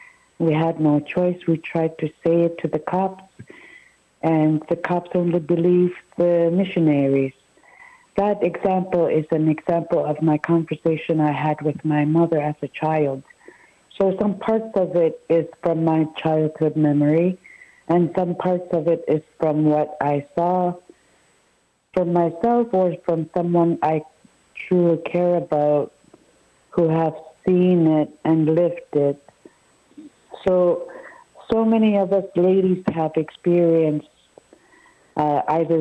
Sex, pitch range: female, 160-195 Hz